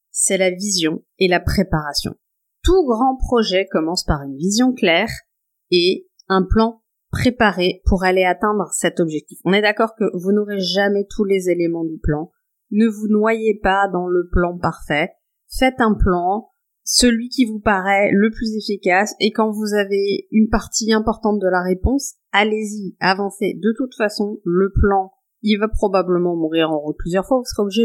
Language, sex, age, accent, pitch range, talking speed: French, female, 30-49, French, 175-215 Hz, 175 wpm